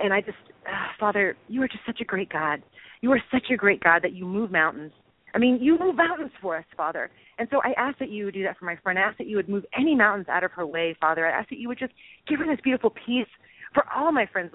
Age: 30-49